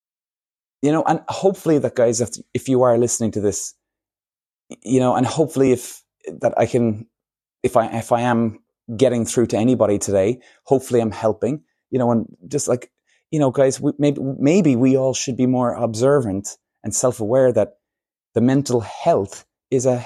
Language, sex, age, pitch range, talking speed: English, male, 20-39, 110-135 Hz, 170 wpm